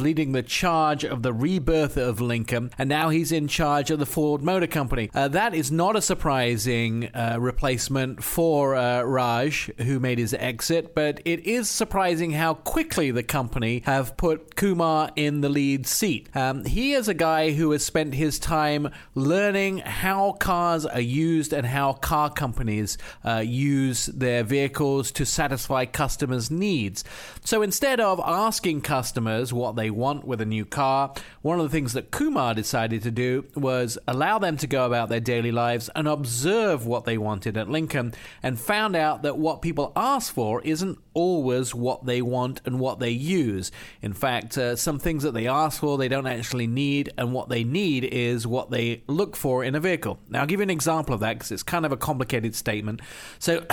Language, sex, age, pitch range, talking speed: English, male, 40-59, 125-160 Hz, 190 wpm